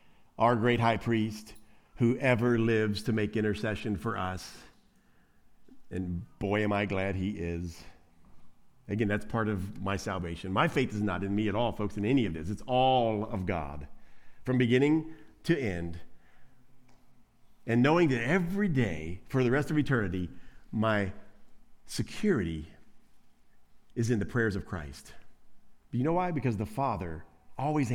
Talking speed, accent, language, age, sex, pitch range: 150 wpm, American, English, 40-59, male, 100-165 Hz